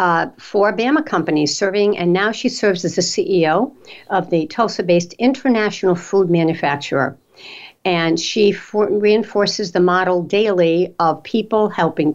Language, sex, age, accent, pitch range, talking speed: English, female, 60-79, American, 155-195 Hz, 140 wpm